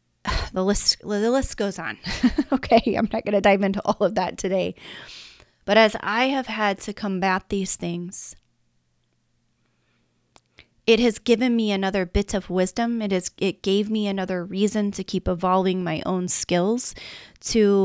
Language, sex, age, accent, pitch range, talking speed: English, female, 30-49, American, 195-235 Hz, 160 wpm